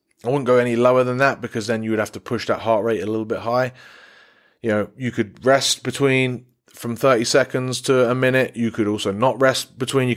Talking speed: 240 wpm